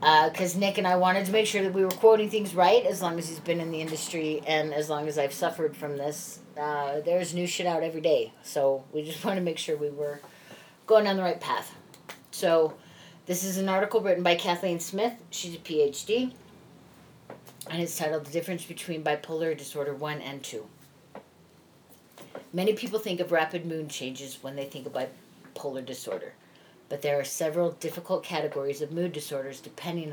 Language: English